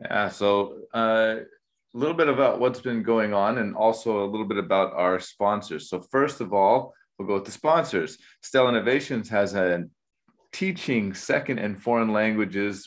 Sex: male